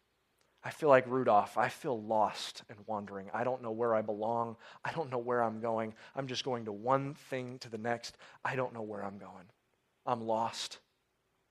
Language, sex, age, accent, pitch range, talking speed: English, male, 30-49, American, 110-140 Hz, 200 wpm